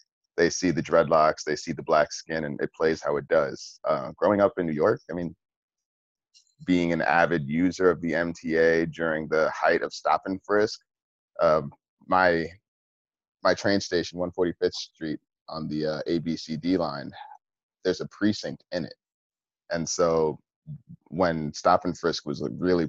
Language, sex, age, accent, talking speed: English, male, 30-49, American, 165 wpm